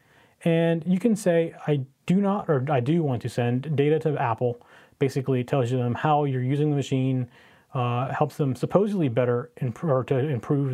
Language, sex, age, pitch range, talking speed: English, male, 30-49, 125-155 Hz, 190 wpm